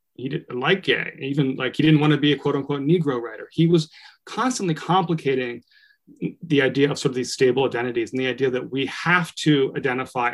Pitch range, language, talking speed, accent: 130-165 Hz, English, 210 wpm, American